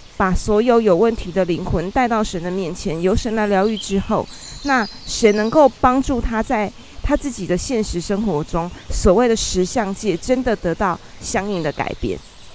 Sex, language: female, Chinese